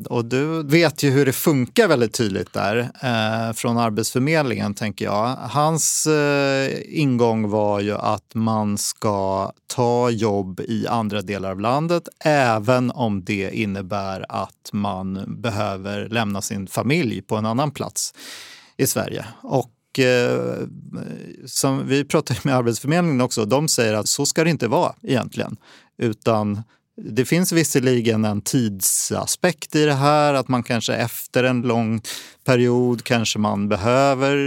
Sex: male